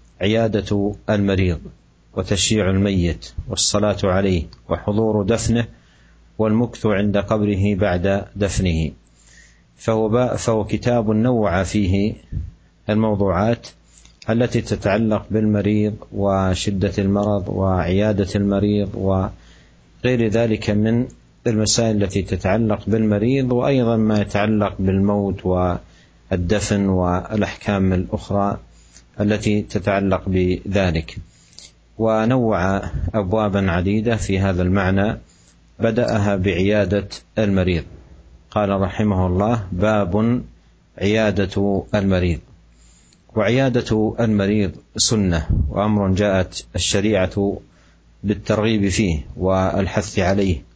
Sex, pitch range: male, 90-110 Hz